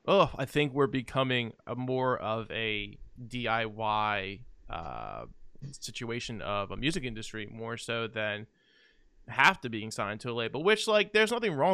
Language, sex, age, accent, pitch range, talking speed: English, male, 20-39, American, 105-130 Hz, 160 wpm